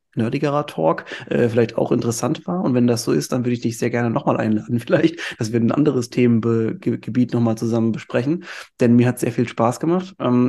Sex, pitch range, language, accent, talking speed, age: male, 115-135 Hz, German, German, 210 wpm, 30-49